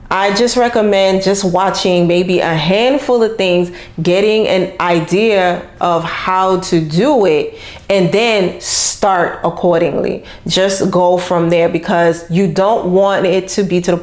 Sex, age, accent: female, 30-49, American